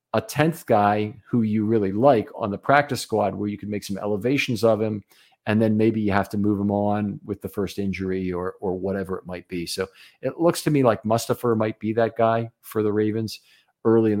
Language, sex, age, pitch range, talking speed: English, male, 50-69, 95-115 Hz, 230 wpm